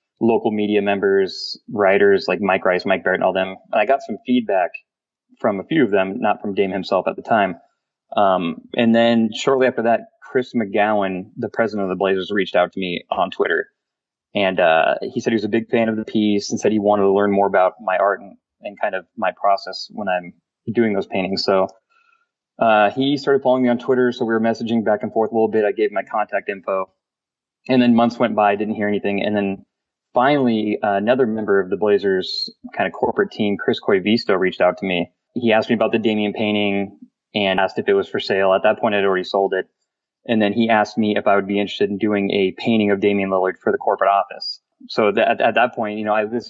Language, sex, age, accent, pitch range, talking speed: English, male, 20-39, American, 100-120 Hz, 235 wpm